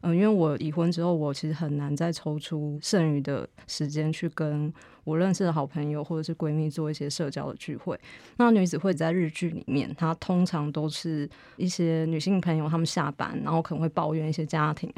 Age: 20-39